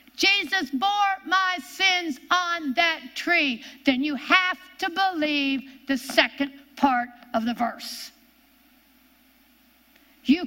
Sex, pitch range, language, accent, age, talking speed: female, 260-300 Hz, English, American, 60-79, 110 wpm